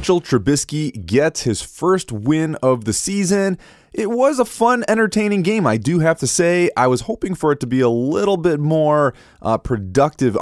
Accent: American